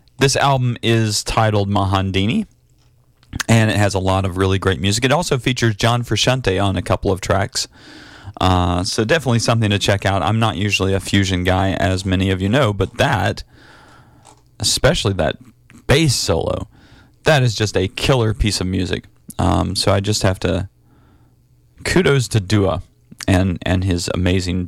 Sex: male